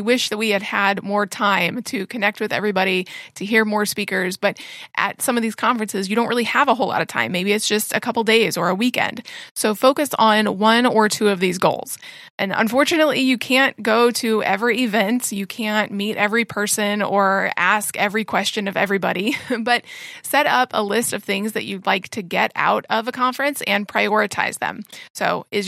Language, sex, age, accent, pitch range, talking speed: English, female, 20-39, American, 205-235 Hz, 205 wpm